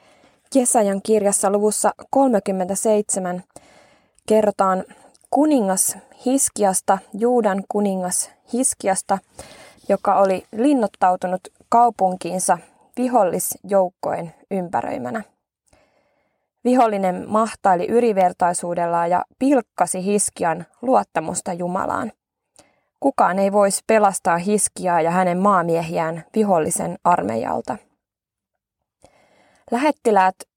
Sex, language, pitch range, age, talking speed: female, Finnish, 180-230 Hz, 20-39, 70 wpm